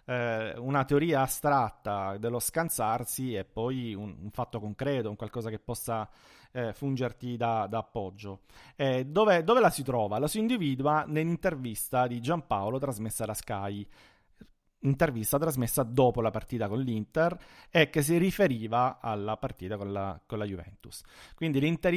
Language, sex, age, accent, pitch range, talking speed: Italian, male, 40-59, native, 110-140 Hz, 145 wpm